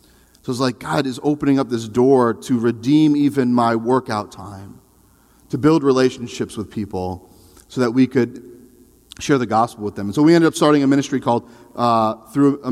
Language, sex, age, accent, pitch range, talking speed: English, male, 40-59, American, 110-145 Hz, 200 wpm